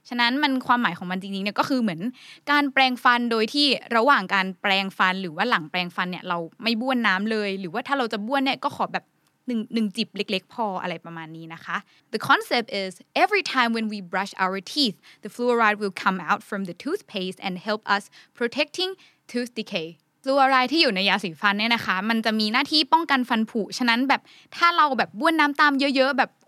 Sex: female